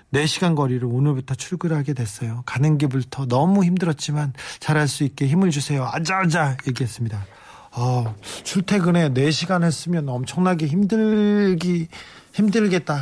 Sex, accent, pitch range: male, native, 130-180 Hz